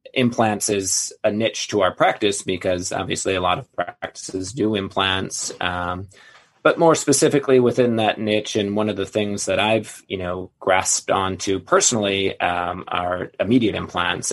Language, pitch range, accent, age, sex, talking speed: English, 90-105 Hz, American, 30-49, male, 160 wpm